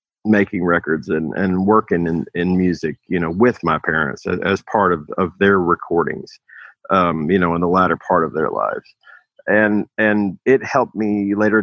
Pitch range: 95-120 Hz